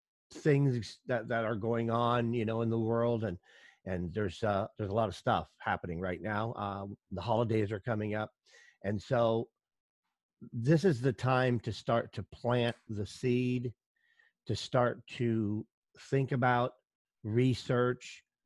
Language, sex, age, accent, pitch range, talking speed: English, male, 50-69, American, 105-125 Hz, 155 wpm